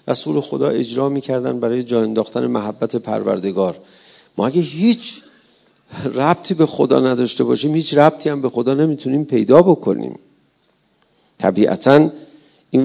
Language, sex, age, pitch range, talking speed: Persian, male, 50-69, 120-170 Hz, 130 wpm